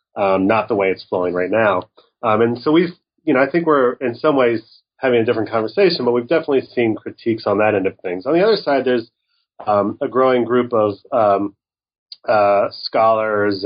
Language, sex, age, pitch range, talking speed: English, male, 30-49, 105-130 Hz, 205 wpm